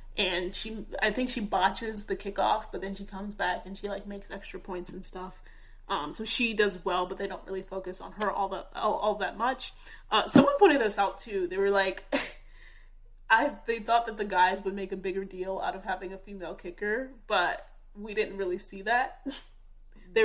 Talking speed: 215 wpm